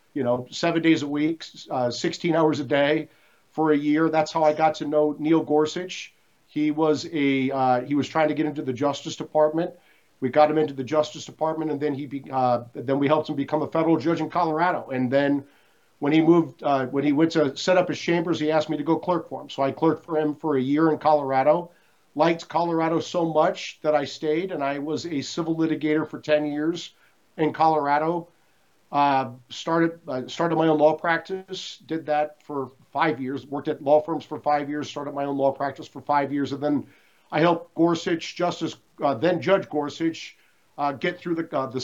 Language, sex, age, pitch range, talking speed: English, male, 50-69, 145-165 Hz, 220 wpm